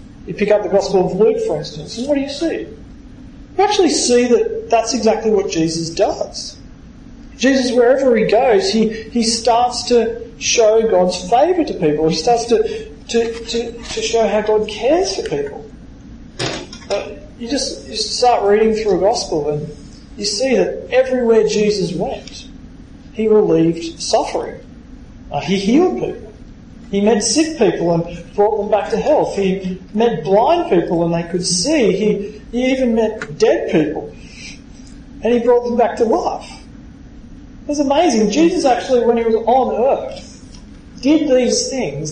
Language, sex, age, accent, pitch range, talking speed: English, male, 40-59, Australian, 195-255 Hz, 160 wpm